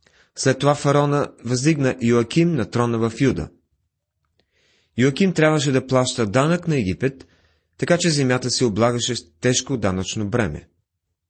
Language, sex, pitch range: Bulgarian, male, 100-145 Hz